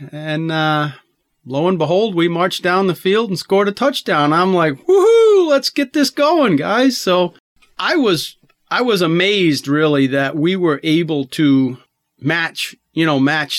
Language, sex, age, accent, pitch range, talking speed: English, male, 40-59, American, 140-180 Hz, 170 wpm